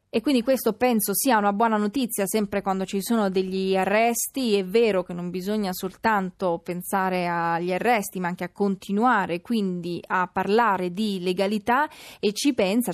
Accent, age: native, 20-39